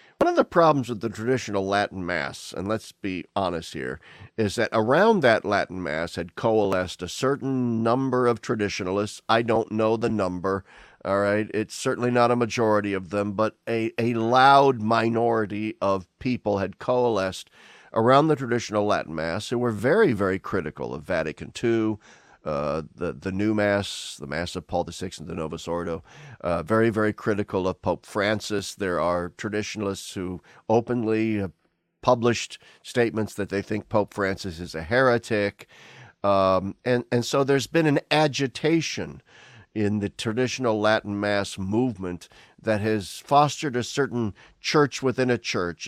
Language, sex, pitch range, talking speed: English, male, 100-120 Hz, 160 wpm